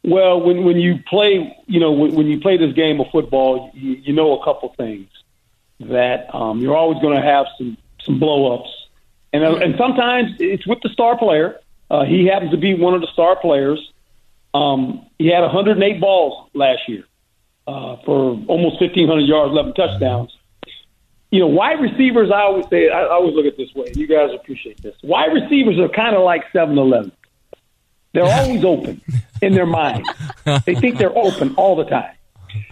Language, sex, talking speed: English, male, 185 wpm